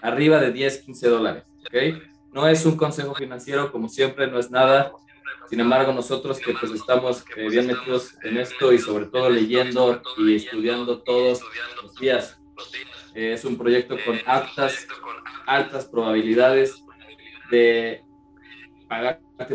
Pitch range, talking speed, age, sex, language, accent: 115-140 Hz, 140 wpm, 20-39, male, Spanish, Mexican